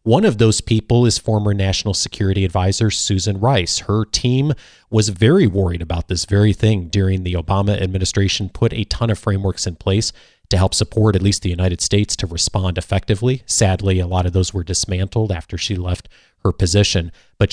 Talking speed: 190 wpm